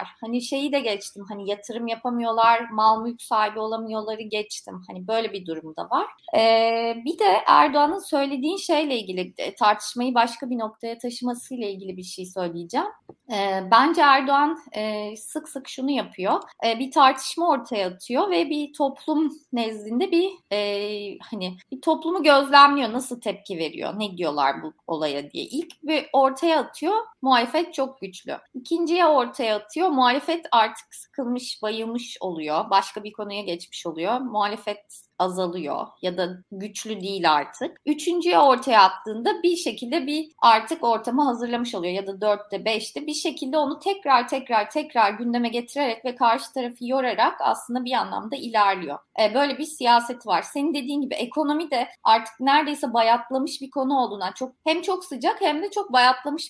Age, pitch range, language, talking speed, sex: 30-49, 215-290 Hz, Turkish, 155 wpm, female